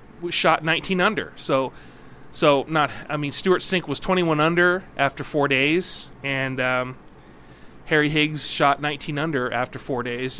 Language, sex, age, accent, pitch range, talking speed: English, male, 30-49, American, 130-160 Hz, 150 wpm